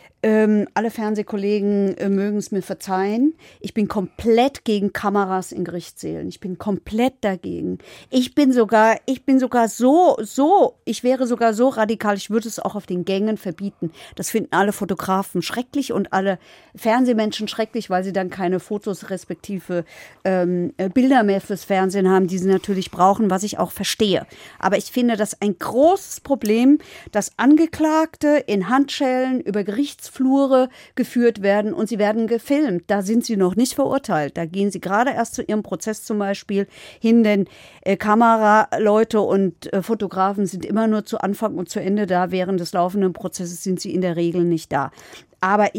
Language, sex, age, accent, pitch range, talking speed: German, female, 50-69, German, 190-230 Hz, 170 wpm